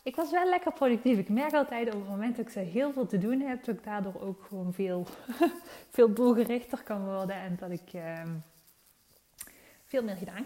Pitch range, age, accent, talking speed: 180-235 Hz, 20-39, Dutch, 195 wpm